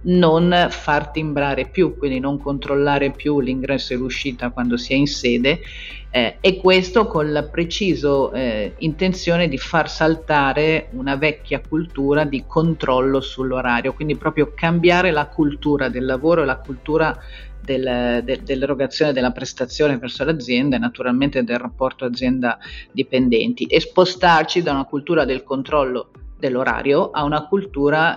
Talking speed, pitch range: 135 wpm, 130-155 Hz